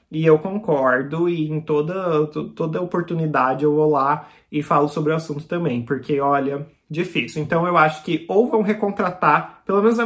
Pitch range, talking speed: 140-175 Hz, 180 wpm